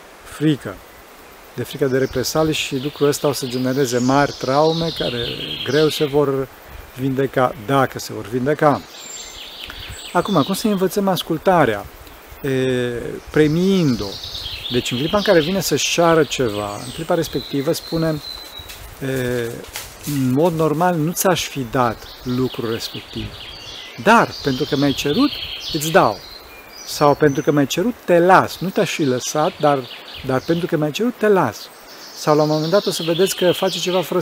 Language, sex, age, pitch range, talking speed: Romanian, male, 40-59, 125-160 Hz, 155 wpm